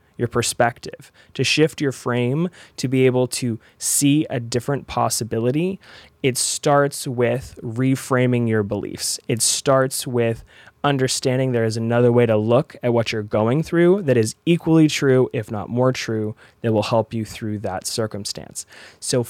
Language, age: English, 20-39